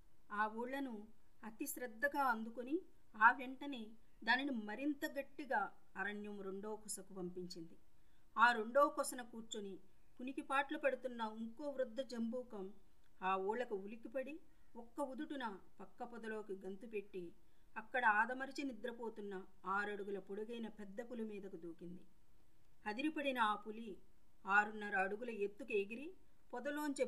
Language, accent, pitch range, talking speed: Telugu, native, 200-255 Hz, 100 wpm